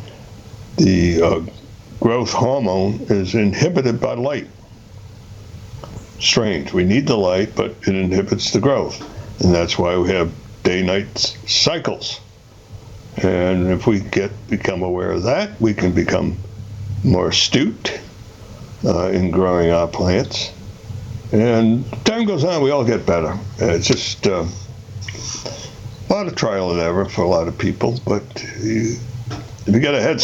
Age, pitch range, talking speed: 60-79, 95-115 Hz, 145 wpm